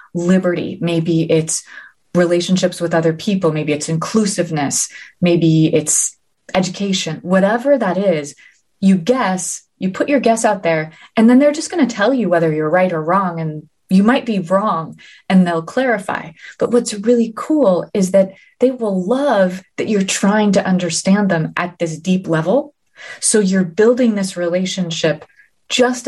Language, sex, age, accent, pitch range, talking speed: English, female, 30-49, American, 170-205 Hz, 160 wpm